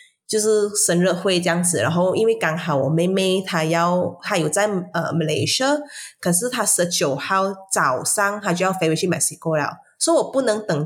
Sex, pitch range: female, 165-235 Hz